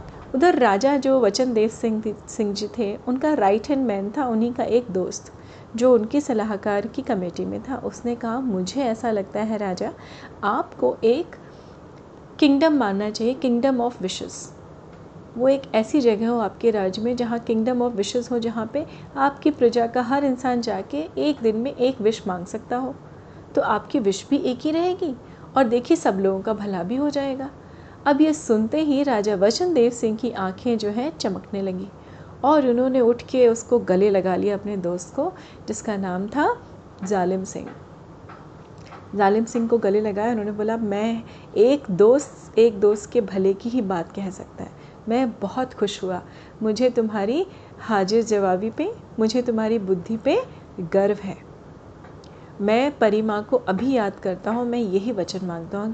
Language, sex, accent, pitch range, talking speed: Hindi, female, native, 200-255 Hz, 170 wpm